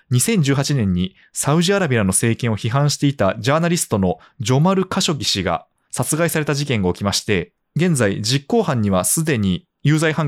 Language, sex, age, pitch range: Japanese, male, 20-39, 105-160 Hz